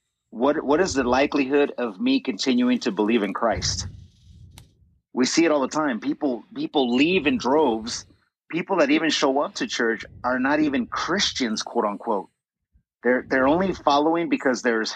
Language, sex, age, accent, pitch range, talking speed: English, male, 30-49, American, 120-145 Hz, 170 wpm